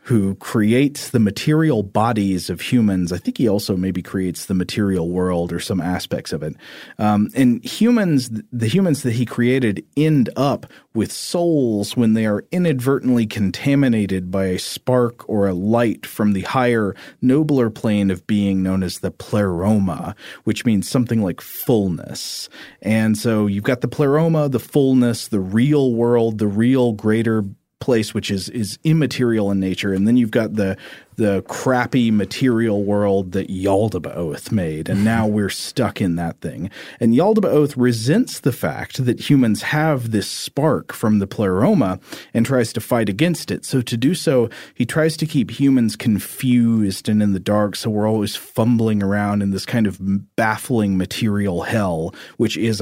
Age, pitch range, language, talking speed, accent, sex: 40-59, 100-125 Hz, English, 165 wpm, American, male